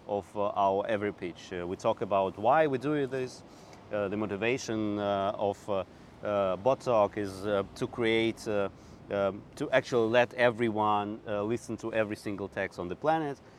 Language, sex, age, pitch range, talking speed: English, male, 30-49, 100-120 Hz, 180 wpm